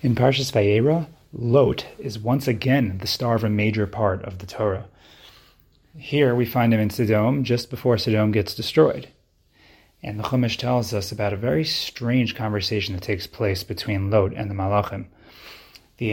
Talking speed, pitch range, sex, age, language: 170 wpm, 105-130 Hz, male, 30-49, English